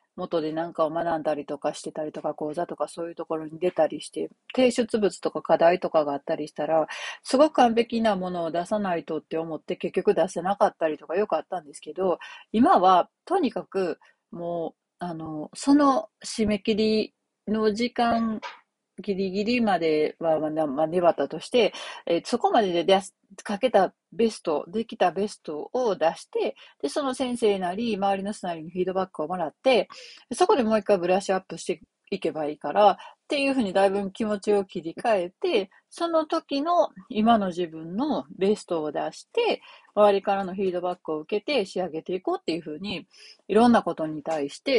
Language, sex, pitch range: Japanese, female, 160-225 Hz